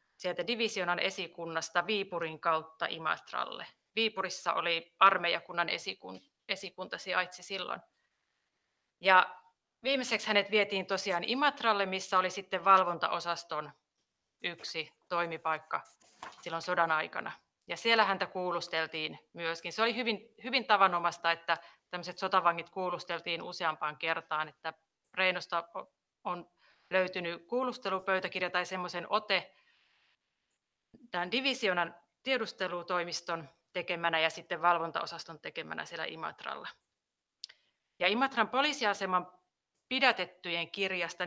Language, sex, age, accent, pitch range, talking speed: Finnish, female, 30-49, native, 170-200 Hz, 95 wpm